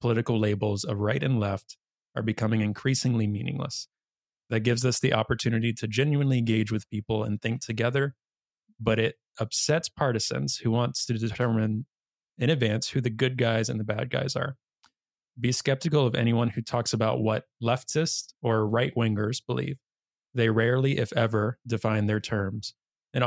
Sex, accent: male, American